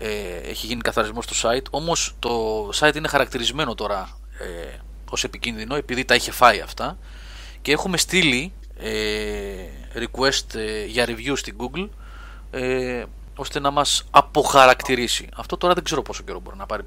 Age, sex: 30-49, male